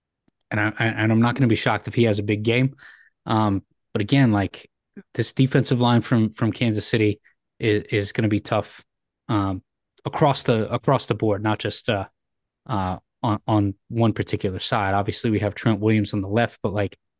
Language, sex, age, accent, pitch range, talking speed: English, male, 20-39, American, 105-120 Hz, 200 wpm